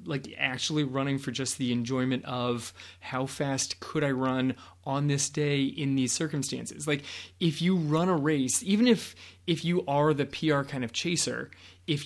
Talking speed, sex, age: 180 wpm, male, 20-39